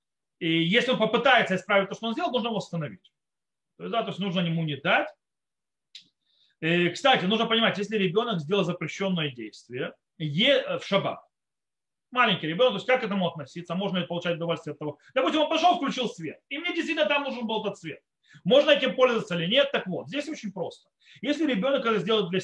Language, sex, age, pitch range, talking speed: Russian, male, 30-49, 175-255 Hz, 200 wpm